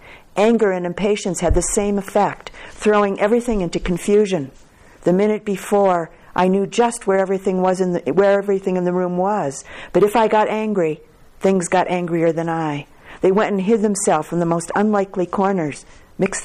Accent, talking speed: American, 180 wpm